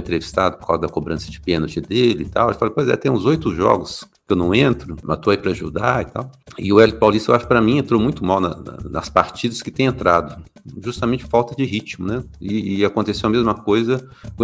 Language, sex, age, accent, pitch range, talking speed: Portuguese, male, 50-69, Brazilian, 85-115 Hz, 235 wpm